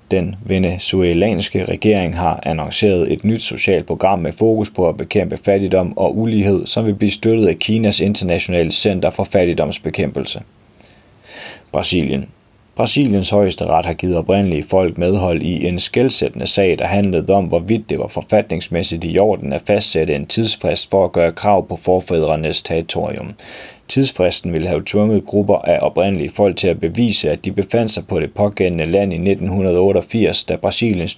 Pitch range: 85-100 Hz